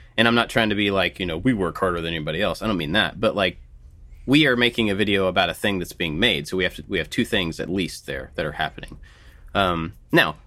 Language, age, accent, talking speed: English, 30-49, American, 275 wpm